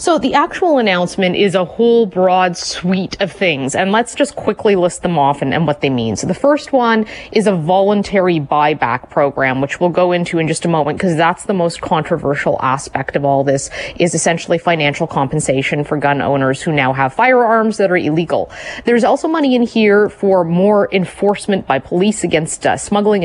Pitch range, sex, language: 170-220 Hz, female, English